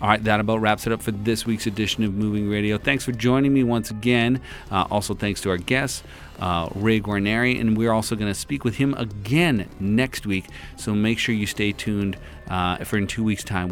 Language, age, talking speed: English, 40-59, 225 wpm